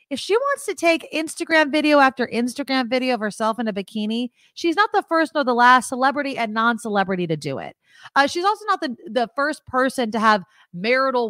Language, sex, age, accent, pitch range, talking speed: English, female, 30-49, American, 195-280 Hz, 205 wpm